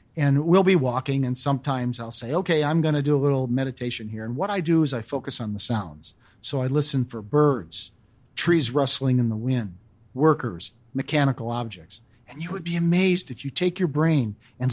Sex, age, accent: male, 50-69, American